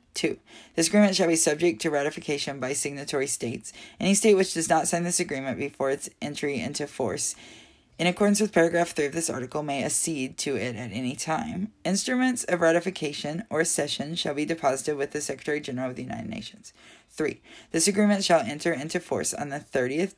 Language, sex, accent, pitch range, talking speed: English, female, American, 130-180 Hz, 190 wpm